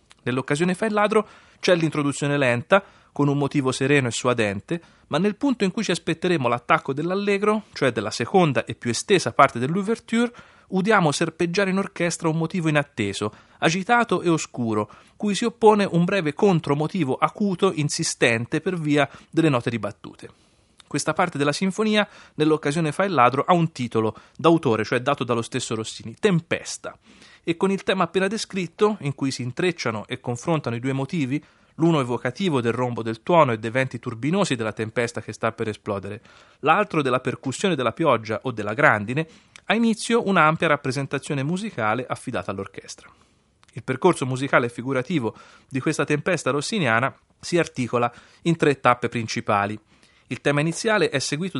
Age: 30-49